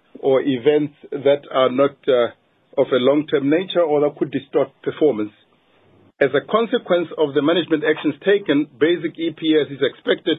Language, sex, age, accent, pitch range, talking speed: English, male, 60-79, South African, 145-180 Hz, 155 wpm